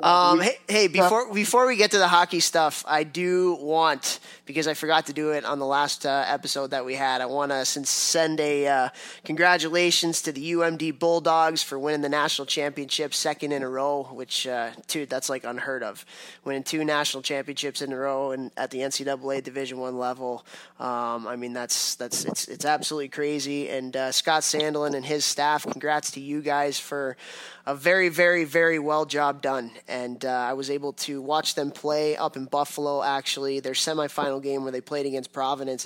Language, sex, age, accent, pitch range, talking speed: English, male, 20-39, American, 135-155 Hz, 200 wpm